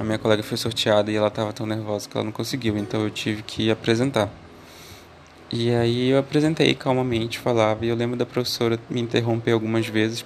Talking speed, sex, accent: 200 wpm, male, Brazilian